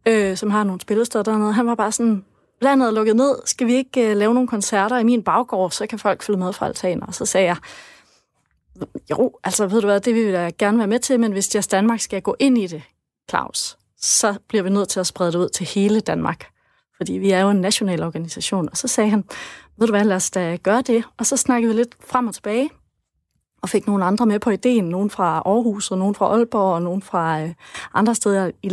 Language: Danish